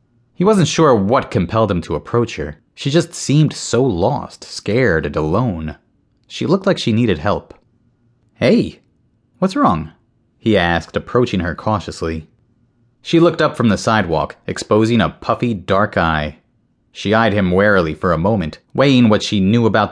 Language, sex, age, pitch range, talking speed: English, male, 30-49, 95-125 Hz, 165 wpm